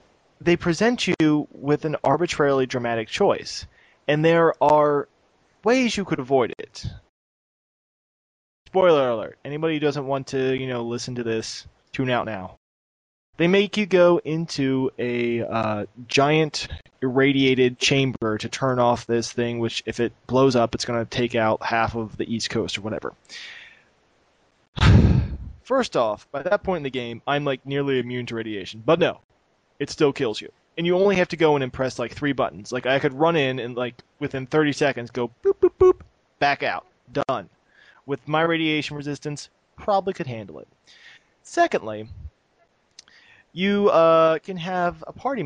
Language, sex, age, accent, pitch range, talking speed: English, male, 20-39, American, 120-165 Hz, 170 wpm